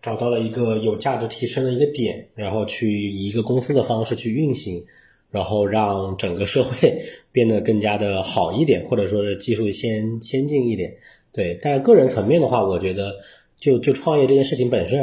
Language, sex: Chinese, male